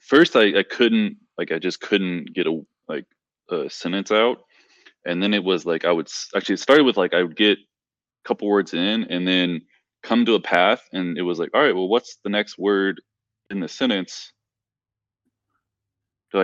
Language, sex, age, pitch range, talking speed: English, male, 20-39, 85-105 Hz, 195 wpm